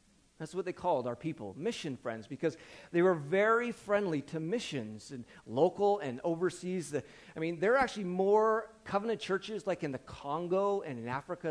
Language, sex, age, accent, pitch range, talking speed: English, male, 40-59, American, 145-215 Hz, 175 wpm